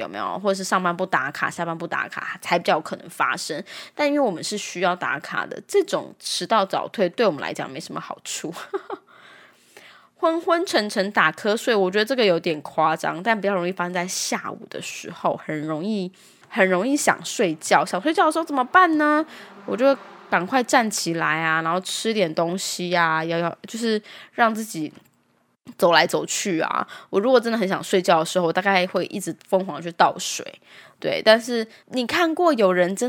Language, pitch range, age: Chinese, 175-245 Hz, 10-29